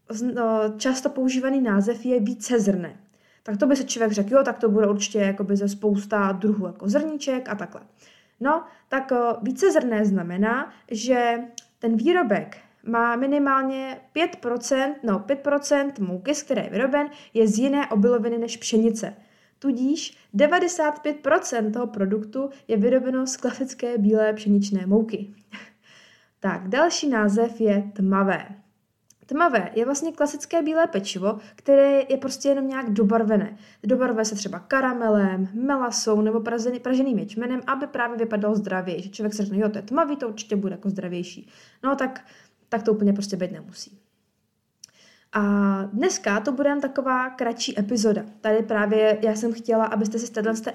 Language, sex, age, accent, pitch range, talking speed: Czech, female, 20-39, native, 210-265 Hz, 150 wpm